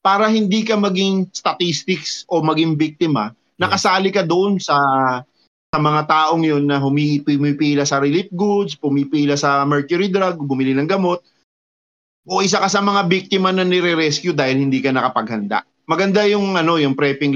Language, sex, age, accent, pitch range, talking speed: Filipino, male, 30-49, native, 135-175 Hz, 160 wpm